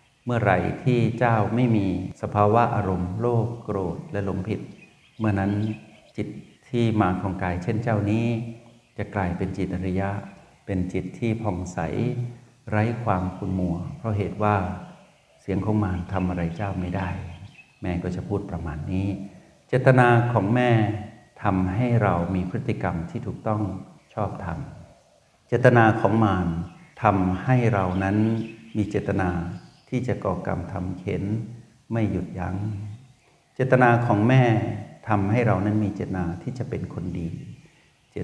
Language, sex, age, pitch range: Thai, male, 60-79, 95-115 Hz